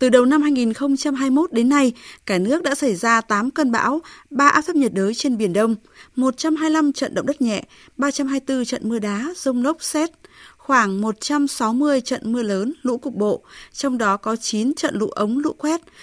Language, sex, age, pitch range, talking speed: Vietnamese, female, 20-39, 215-280 Hz, 190 wpm